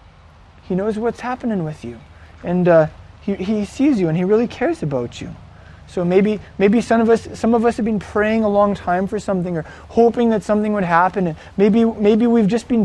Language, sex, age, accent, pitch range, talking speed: English, male, 20-39, American, 155-215 Hz, 220 wpm